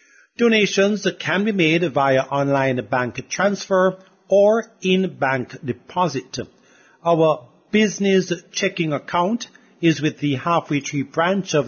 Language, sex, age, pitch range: English, male, 50-69, 150-200 Hz